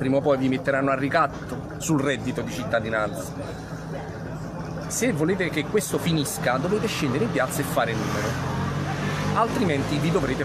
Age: 40-59